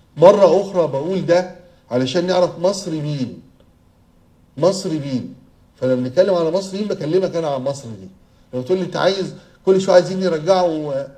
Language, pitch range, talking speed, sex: Arabic, 145-195 Hz, 150 wpm, male